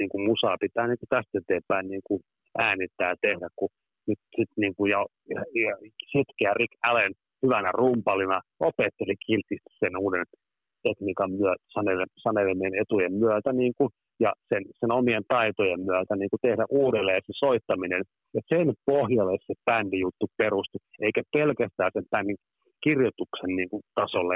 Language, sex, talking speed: Finnish, male, 135 wpm